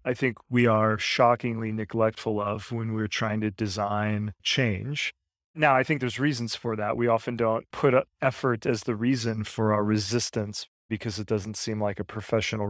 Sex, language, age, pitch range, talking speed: male, English, 30-49, 110-130 Hz, 180 wpm